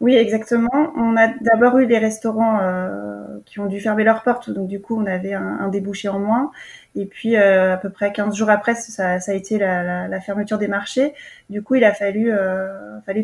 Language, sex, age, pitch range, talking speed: French, female, 20-39, 195-230 Hz, 230 wpm